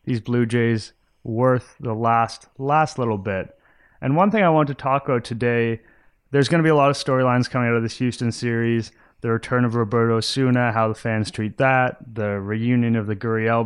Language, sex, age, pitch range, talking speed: English, male, 30-49, 110-125 Hz, 205 wpm